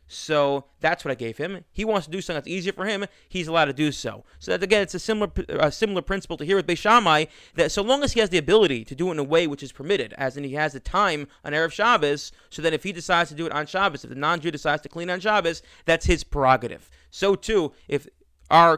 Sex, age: male, 30-49